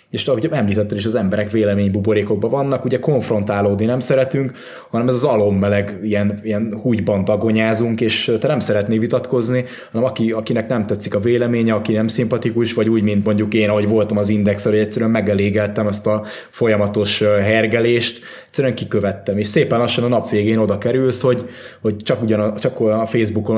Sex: male